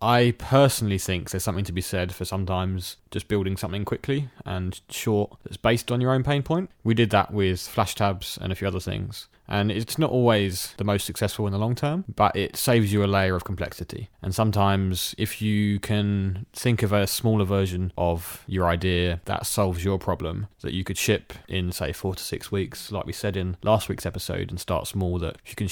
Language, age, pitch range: English, 20-39, 90-110 Hz